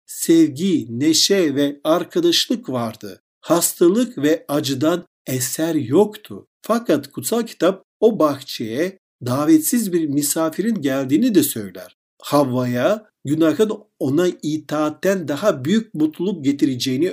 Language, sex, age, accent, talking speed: Turkish, male, 50-69, native, 100 wpm